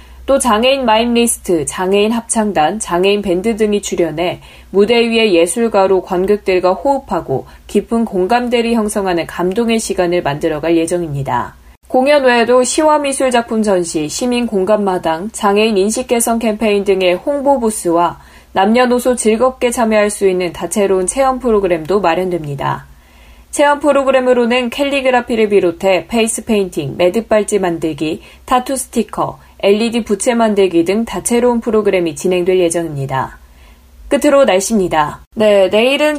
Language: Korean